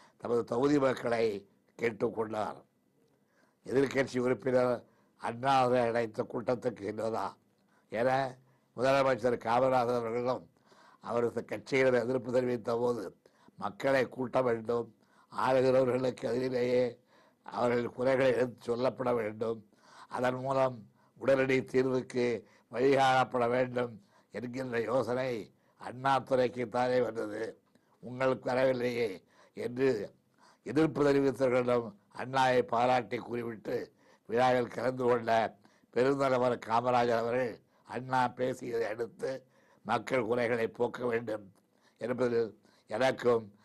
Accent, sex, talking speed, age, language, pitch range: native, male, 85 wpm, 60-79, Tamil, 120-130 Hz